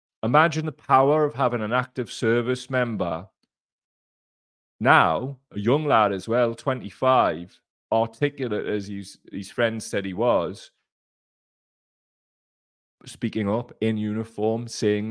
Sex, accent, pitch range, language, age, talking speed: male, British, 105-145 Hz, English, 30-49, 115 wpm